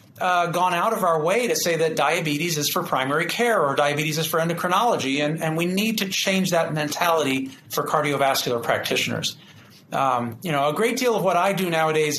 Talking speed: 200 wpm